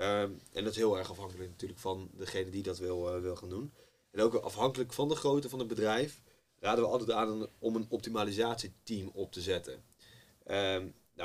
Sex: male